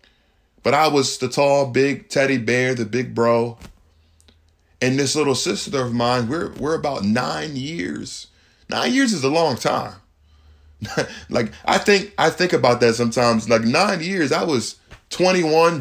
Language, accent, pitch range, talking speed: English, American, 115-160 Hz, 160 wpm